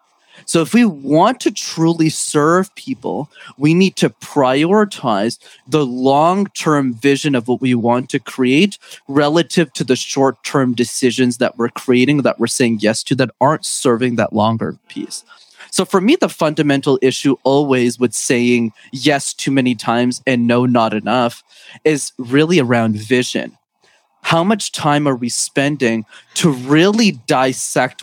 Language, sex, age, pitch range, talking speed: English, male, 20-39, 125-155 Hz, 150 wpm